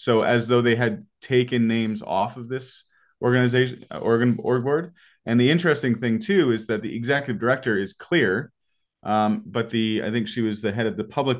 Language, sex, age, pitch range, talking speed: English, male, 30-49, 110-130 Hz, 195 wpm